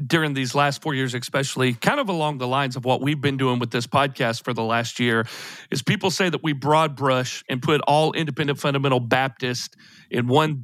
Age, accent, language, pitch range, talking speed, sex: 40-59, American, English, 130-155 Hz, 215 wpm, male